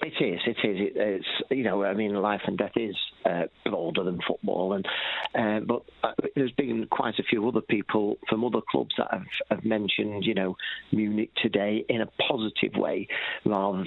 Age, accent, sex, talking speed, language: 50-69, British, male, 195 wpm, English